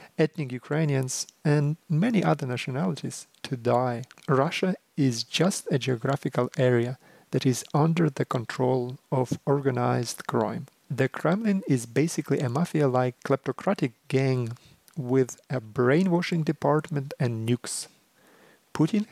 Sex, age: male, 40-59